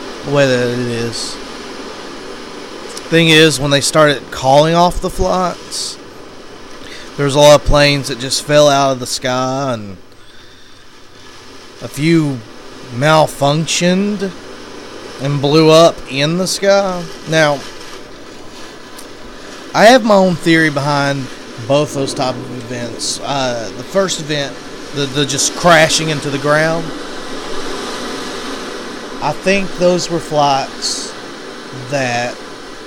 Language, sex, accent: English, male, American